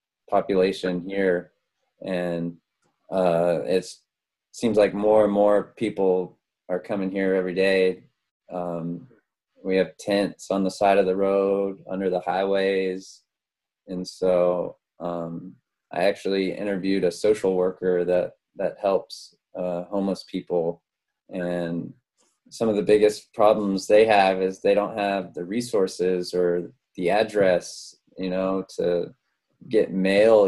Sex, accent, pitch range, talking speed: male, American, 90-100 Hz, 130 wpm